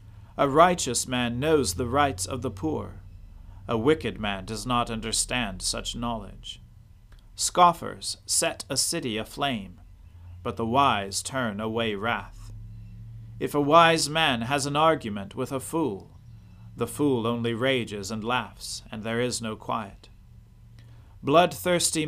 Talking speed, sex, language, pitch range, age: 135 wpm, male, English, 100-135 Hz, 40-59